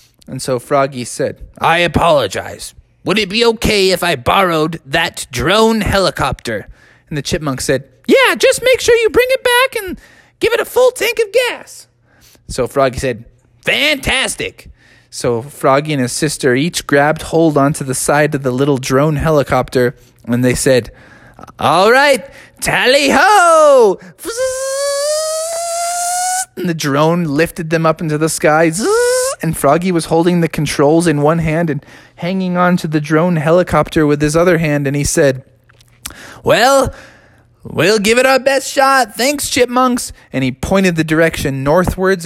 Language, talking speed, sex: English, 155 wpm, male